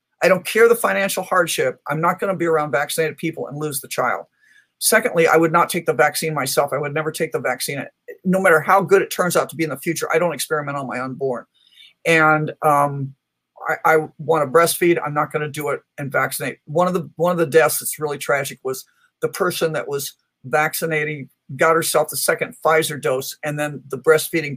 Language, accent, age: English, American, 50-69